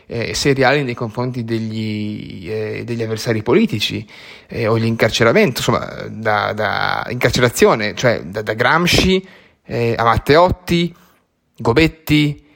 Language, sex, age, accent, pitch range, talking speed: Italian, male, 20-39, native, 115-135 Hz, 115 wpm